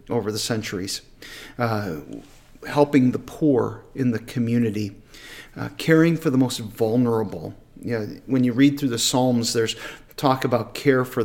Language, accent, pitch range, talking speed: English, American, 115-140 Hz, 155 wpm